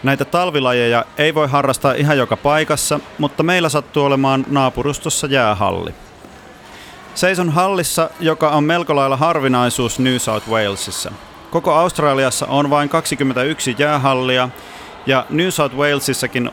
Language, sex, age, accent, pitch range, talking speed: Finnish, male, 30-49, native, 120-150 Hz, 125 wpm